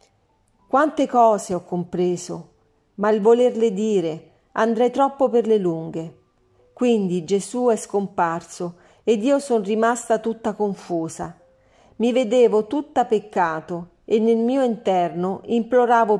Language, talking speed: Italian, 120 wpm